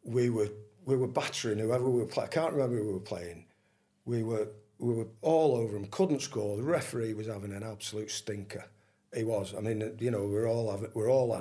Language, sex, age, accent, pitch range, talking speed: English, male, 50-69, British, 105-130 Hz, 230 wpm